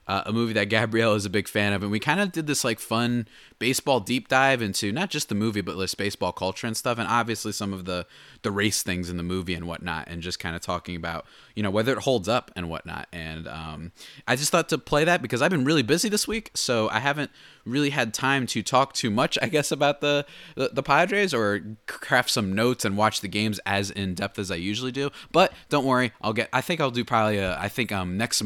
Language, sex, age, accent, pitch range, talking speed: English, male, 20-39, American, 105-145 Hz, 250 wpm